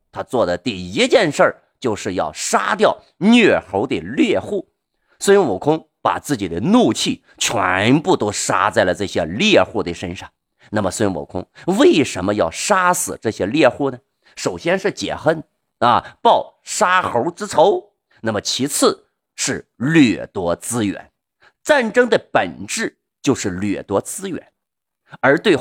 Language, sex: Chinese, male